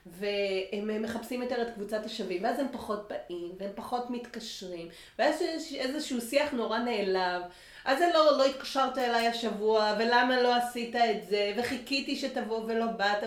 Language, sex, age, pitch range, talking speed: Hebrew, female, 30-49, 195-255 Hz, 160 wpm